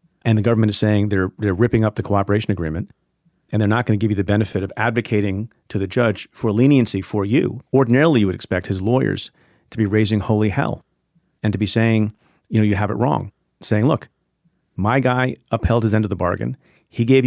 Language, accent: English, American